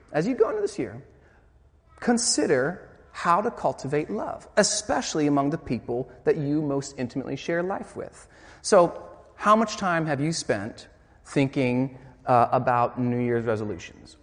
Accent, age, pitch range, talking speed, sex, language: American, 30-49, 115-165 Hz, 150 wpm, male, English